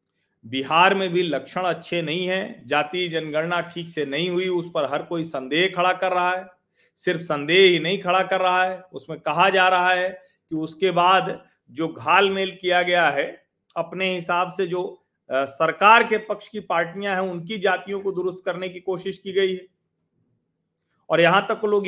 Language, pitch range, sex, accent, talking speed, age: Hindi, 160-220 Hz, male, native, 185 wpm, 40-59